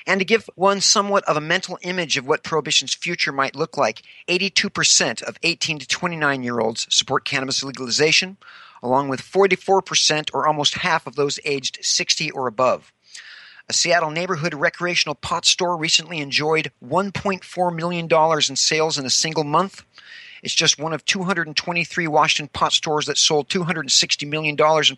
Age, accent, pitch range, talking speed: 50-69, American, 150-180 Hz, 155 wpm